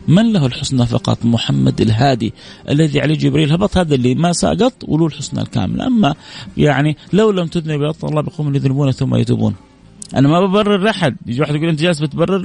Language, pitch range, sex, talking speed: Arabic, 125-165 Hz, male, 180 wpm